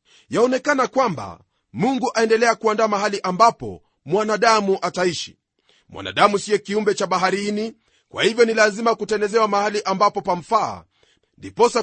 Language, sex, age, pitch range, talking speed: Swahili, male, 40-59, 190-225 Hz, 115 wpm